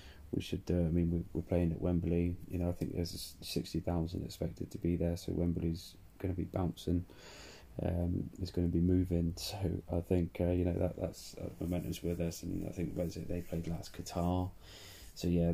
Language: English